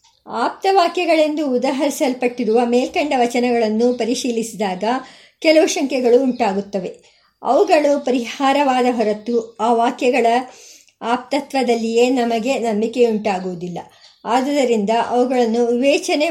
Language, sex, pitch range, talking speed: Kannada, male, 230-275 Hz, 75 wpm